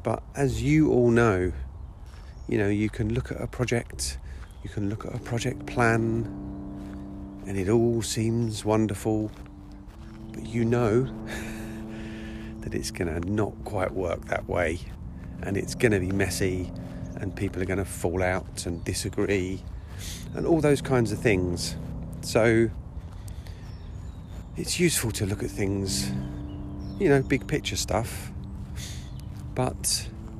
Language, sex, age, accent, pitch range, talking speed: English, male, 40-59, British, 90-110 Hz, 140 wpm